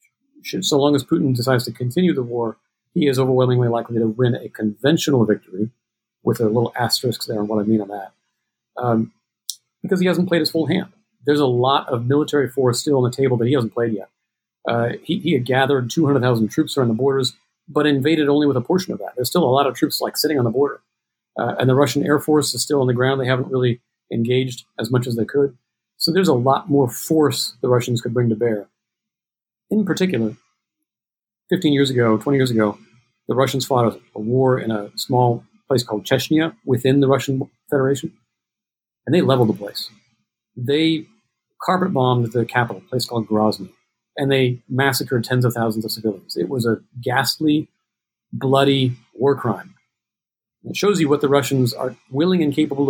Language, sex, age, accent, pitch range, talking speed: English, male, 50-69, American, 120-145 Hz, 200 wpm